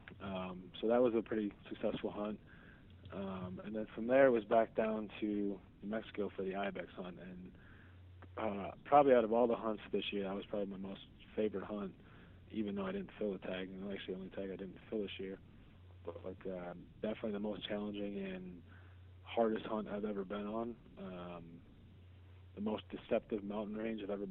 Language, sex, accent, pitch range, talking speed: English, male, American, 90-105 Hz, 200 wpm